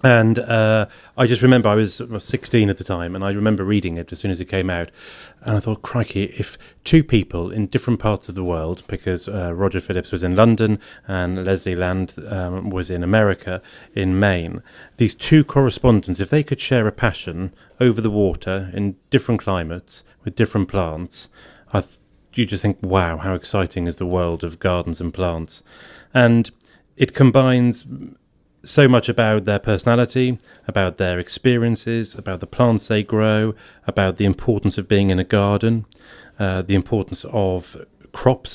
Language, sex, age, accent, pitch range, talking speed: English, male, 30-49, British, 95-120 Hz, 175 wpm